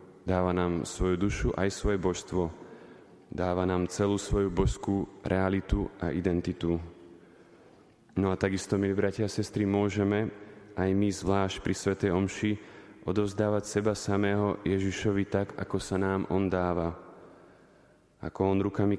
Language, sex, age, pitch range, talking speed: Slovak, male, 20-39, 90-100 Hz, 135 wpm